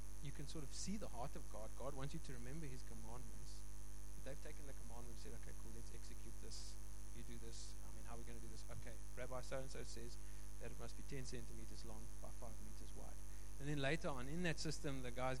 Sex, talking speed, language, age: male, 245 wpm, English, 20-39